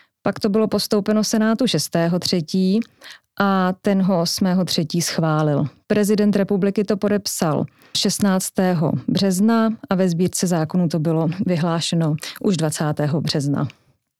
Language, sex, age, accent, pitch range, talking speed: Czech, female, 30-49, native, 180-215 Hz, 115 wpm